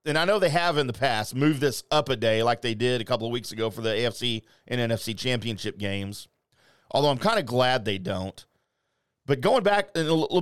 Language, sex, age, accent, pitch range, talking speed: English, male, 40-59, American, 115-165 Hz, 235 wpm